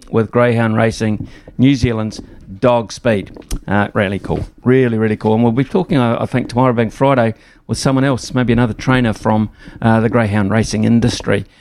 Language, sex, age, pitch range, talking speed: English, male, 50-69, 115-135 Hz, 180 wpm